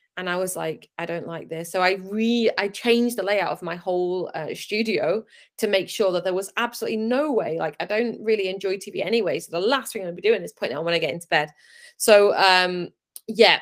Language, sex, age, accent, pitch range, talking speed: English, female, 20-39, British, 180-225 Hz, 245 wpm